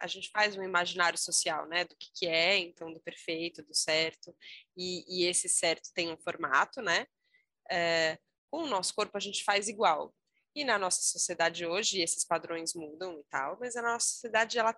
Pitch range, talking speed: 170-210 Hz, 195 wpm